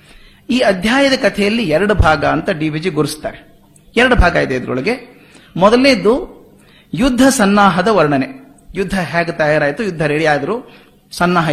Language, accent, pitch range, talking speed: Kannada, native, 150-200 Hz, 125 wpm